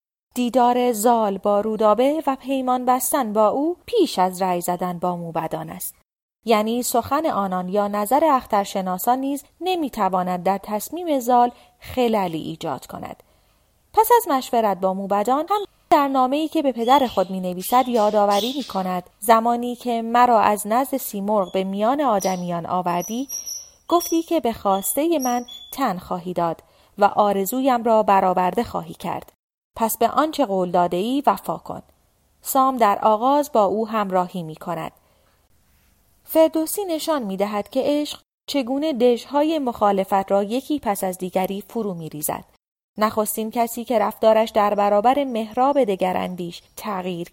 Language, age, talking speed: Persian, 30-49, 145 wpm